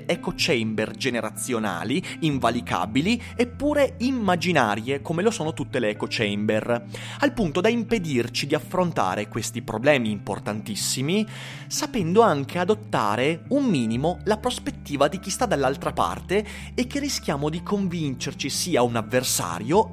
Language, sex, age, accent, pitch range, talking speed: Italian, male, 30-49, native, 110-180 Hz, 120 wpm